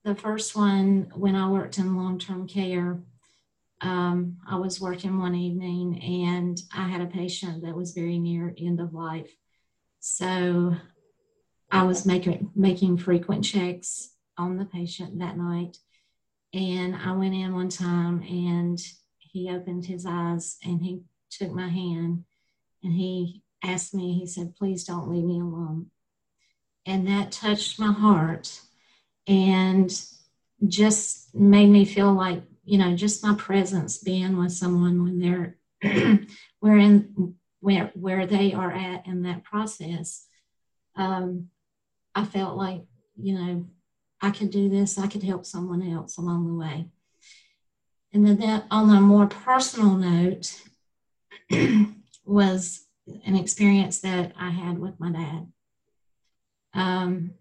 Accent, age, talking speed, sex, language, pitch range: American, 50-69, 140 wpm, female, English, 175-195 Hz